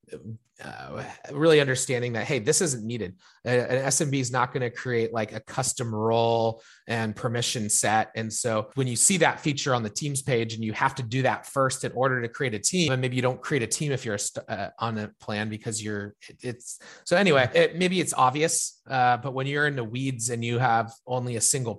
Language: English